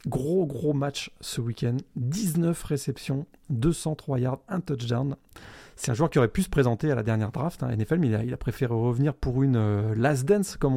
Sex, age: male, 30-49